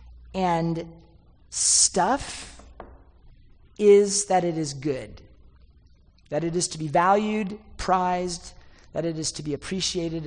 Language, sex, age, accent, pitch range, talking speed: English, male, 40-59, American, 150-190 Hz, 115 wpm